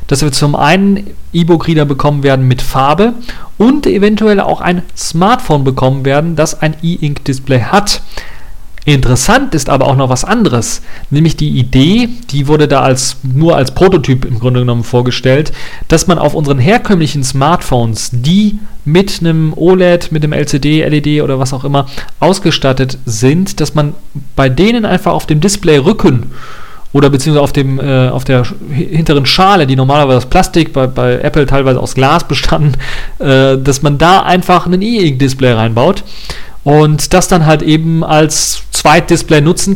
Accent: German